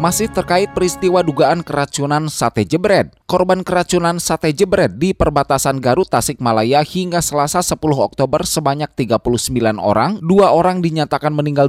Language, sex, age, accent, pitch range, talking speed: Indonesian, male, 20-39, native, 115-175 Hz, 140 wpm